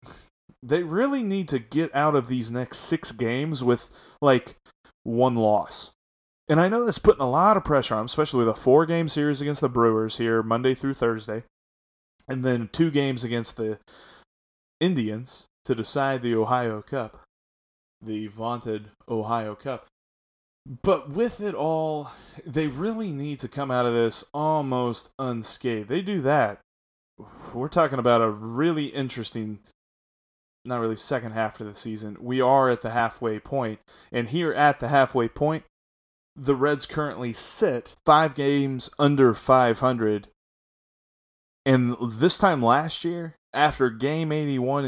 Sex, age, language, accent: male, 20-39, English, American